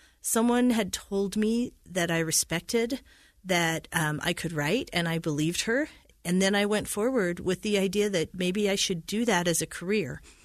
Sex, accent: female, American